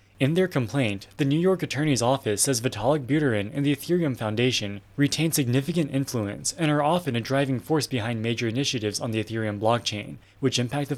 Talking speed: 185 wpm